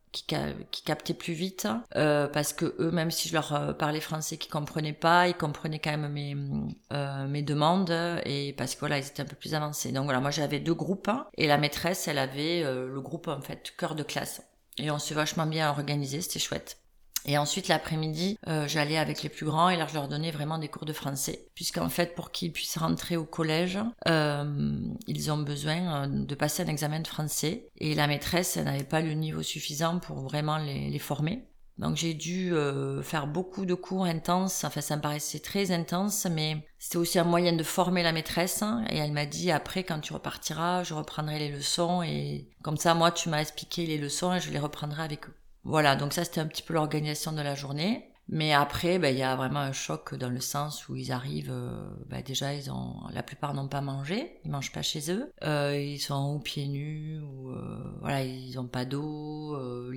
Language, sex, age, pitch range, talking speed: French, female, 30-49, 140-170 Hz, 215 wpm